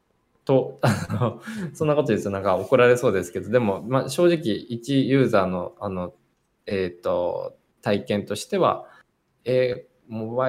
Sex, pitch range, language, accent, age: male, 105-155 Hz, Japanese, native, 20-39